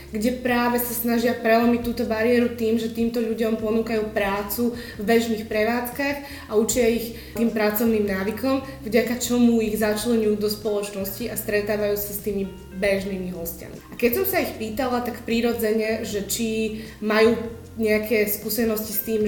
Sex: female